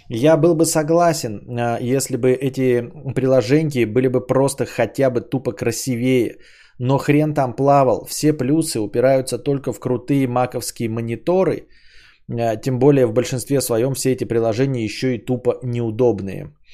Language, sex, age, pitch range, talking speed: Bulgarian, male, 20-39, 120-150 Hz, 140 wpm